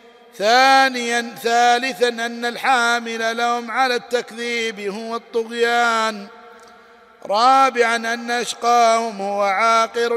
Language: Arabic